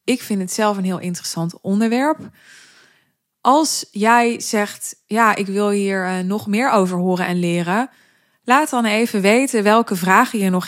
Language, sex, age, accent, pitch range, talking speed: Dutch, female, 20-39, Dutch, 175-215 Hz, 170 wpm